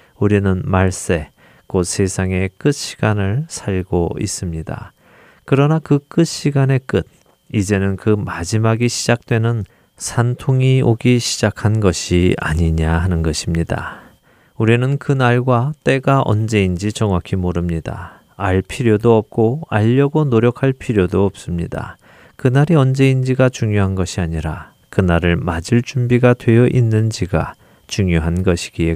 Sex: male